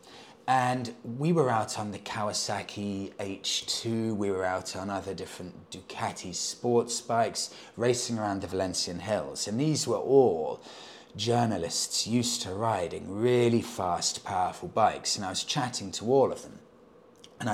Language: English